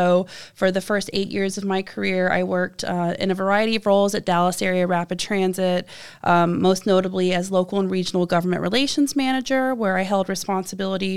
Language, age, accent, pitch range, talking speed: English, 20-39, American, 180-200 Hz, 195 wpm